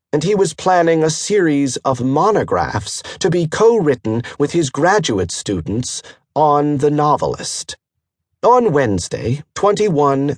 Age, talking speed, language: 40-59, 120 wpm, English